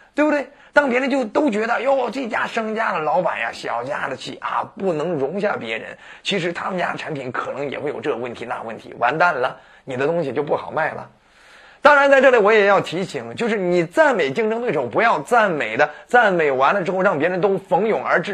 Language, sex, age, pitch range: Chinese, male, 30-49, 170-270 Hz